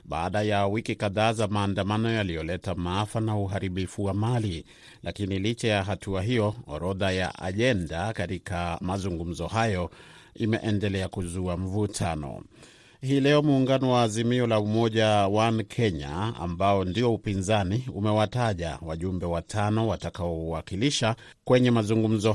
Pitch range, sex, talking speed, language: 90-110 Hz, male, 115 wpm, Swahili